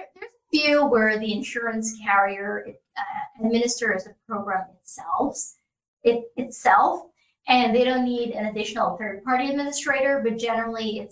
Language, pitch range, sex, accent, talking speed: English, 200-245 Hz, female, American, 125 wpm